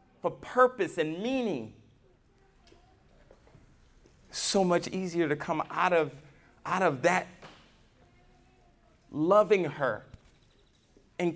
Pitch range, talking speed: 155-215 Hz, 85 wpm